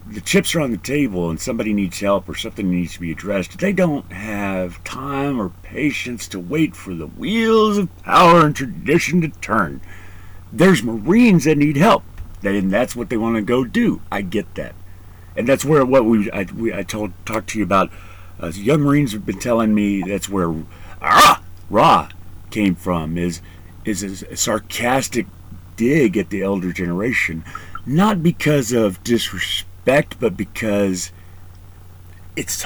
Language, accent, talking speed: English, American, 170 wpm